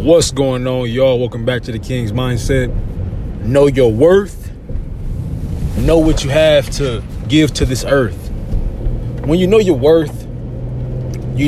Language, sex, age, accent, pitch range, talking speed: English, male, 20-39, American, 110-150 Hz, 145 wpm